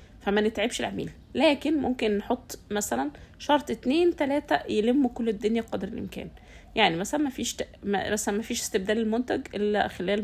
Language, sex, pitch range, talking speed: Arabic, female, 200-245 Hz, 150 wpm